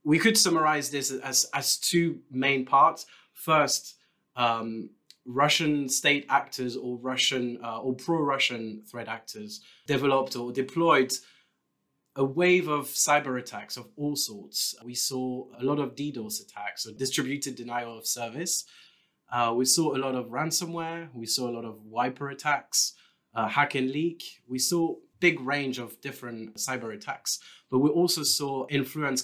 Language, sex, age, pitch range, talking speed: English, male, 20-39, 115-145 Hz, 155 wpm